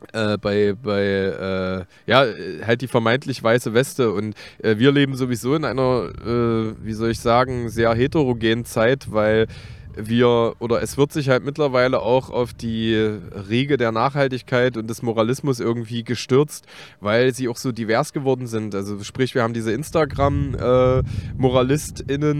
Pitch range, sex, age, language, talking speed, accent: 110-135 Hz, male, 20-39, German, 155 wpm, German